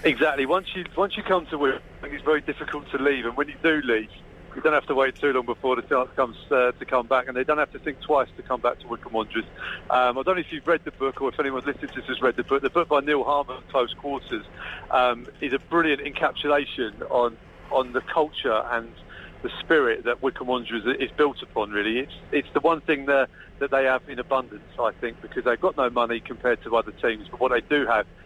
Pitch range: 120-145 Hz